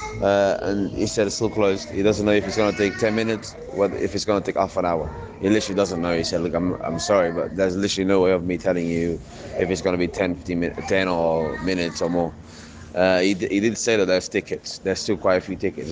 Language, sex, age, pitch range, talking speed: English, male, 20-39, 90-105 Hz, 275 wpm